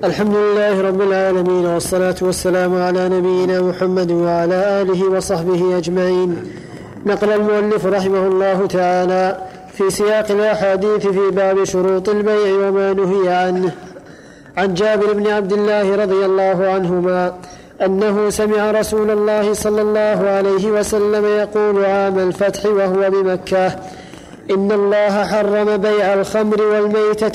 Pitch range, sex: 185-210 Hz, male